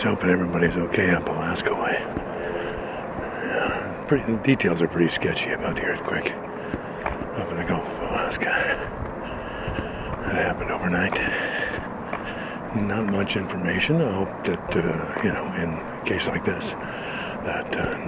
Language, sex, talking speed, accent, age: English, male, 135 wpm, American, 60-79